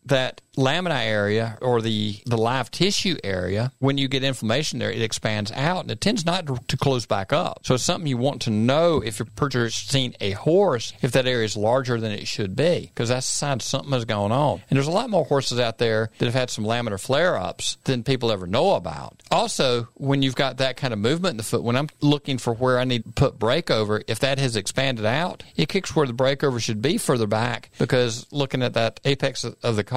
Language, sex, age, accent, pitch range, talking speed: English, male, 50-69, American, 115-135 Hz, 230 wpm